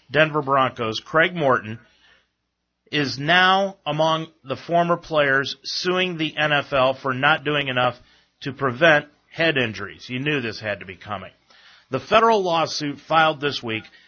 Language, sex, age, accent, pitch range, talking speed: English, male, 40-59, American, 125-170 Hz, 145 wpm